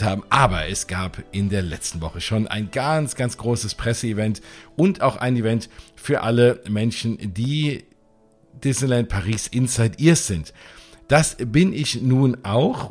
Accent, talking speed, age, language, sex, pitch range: German, 150 wpm, 50-69, German, male, 110-130 Hz